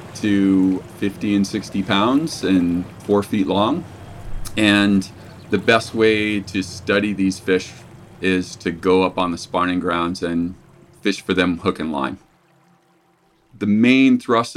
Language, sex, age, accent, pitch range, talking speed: English, male, 40-59, American, 90-105 Hz, 145 wpm